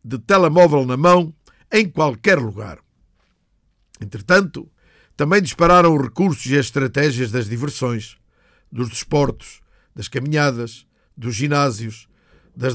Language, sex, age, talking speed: Portuguese, male, 50-69, 110 wpm